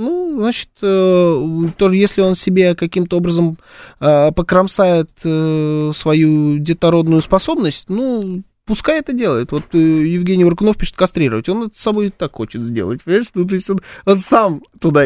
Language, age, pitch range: Russian, 20-39, 135-185 Hz